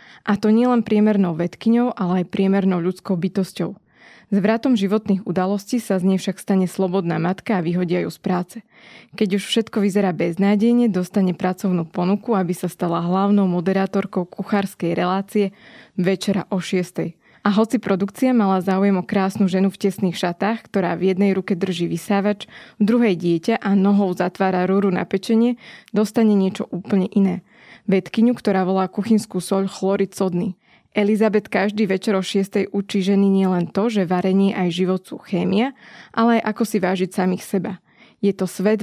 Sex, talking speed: female, 160 wpm